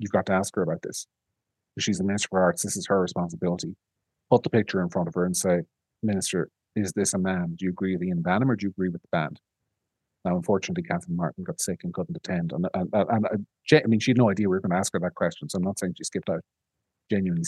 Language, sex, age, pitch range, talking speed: English, male, 40-59, 100-135 Hz, 270 wpm